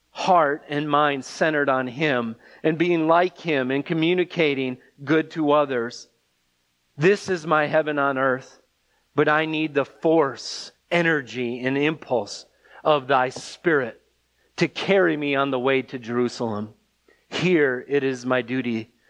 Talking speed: 140 wpm